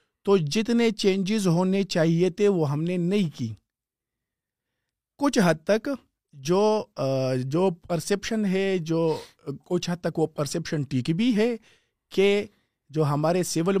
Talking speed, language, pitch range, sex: 135 wpm, Urdu, 140-200 Hz, male